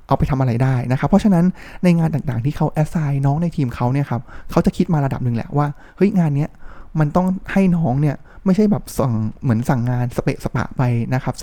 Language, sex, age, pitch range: Thai, male, 20-39, 130-165 Hz